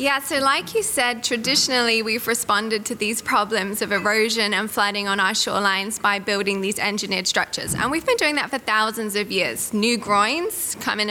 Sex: female